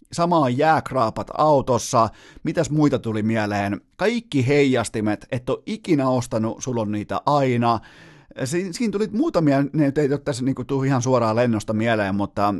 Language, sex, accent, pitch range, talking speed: Finnish, male, native, 110-145 Hz, 150 wpm